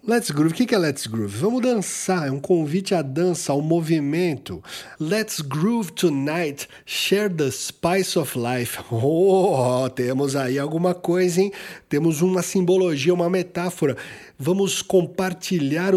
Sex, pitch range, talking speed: male, 130-180 Hz, 140 wpm